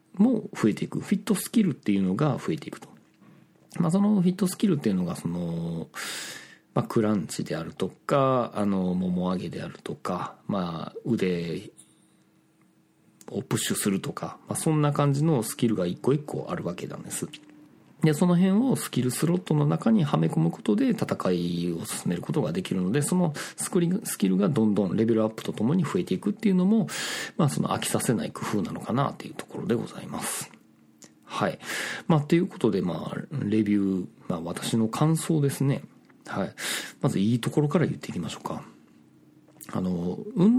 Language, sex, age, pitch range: Japanese, male, 40-59, 110-185 Hz